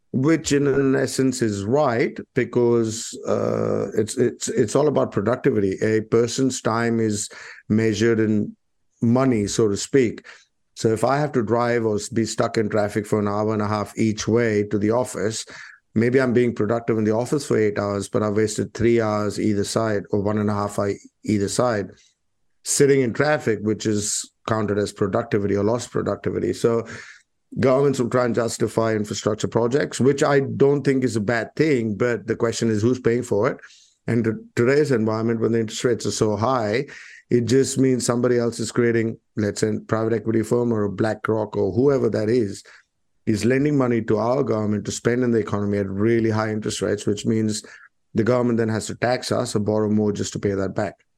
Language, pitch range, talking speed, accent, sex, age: English, 105-120 Hz, 200 wpm, Indian, male, 50-69